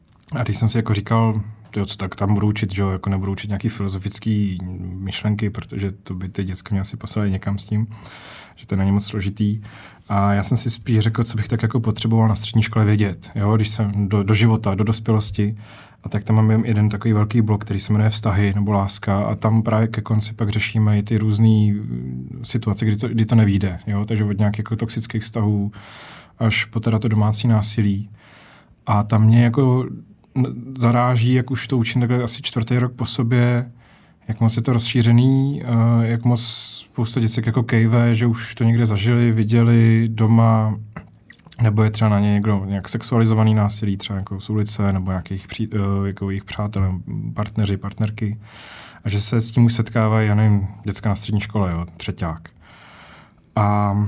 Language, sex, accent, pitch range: Czech, male, native, 100-115 Hz